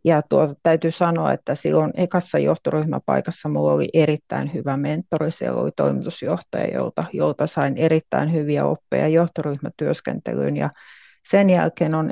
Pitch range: 150-180 Hz